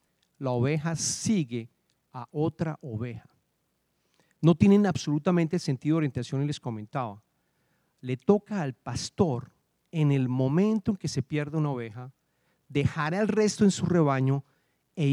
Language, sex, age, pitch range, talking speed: English, male, 40-59, 135-180 Hz, 135 wpm